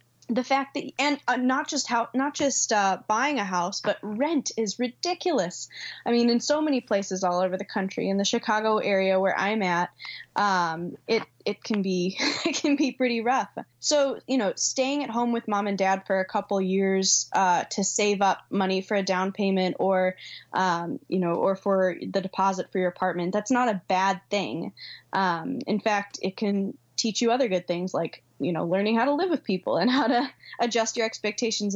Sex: female